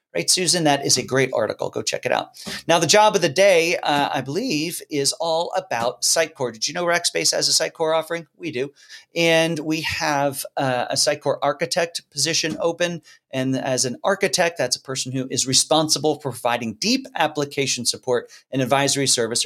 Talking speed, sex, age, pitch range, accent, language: 190 wpm, male, 40-59, 130-175 Hz, American, English